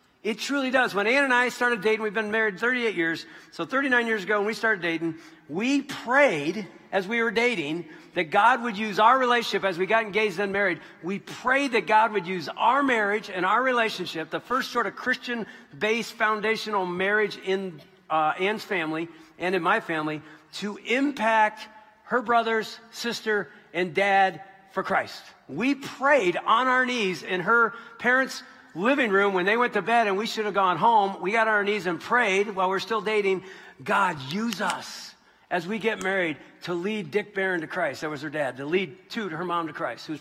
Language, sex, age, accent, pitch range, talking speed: English, male, 50-69, American, 175-225 Hz, 200 wpm